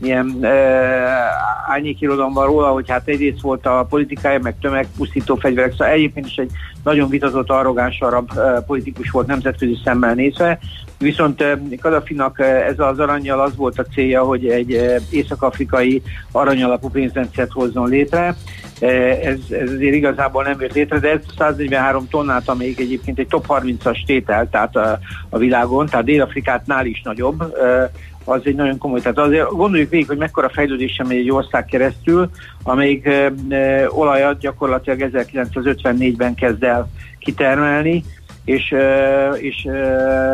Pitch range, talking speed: 125-140 Hz, 150 wpm